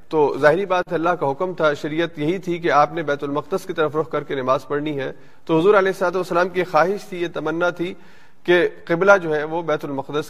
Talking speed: 245 wpm